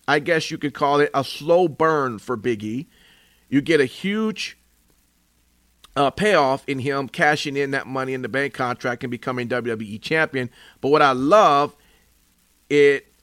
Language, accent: English, American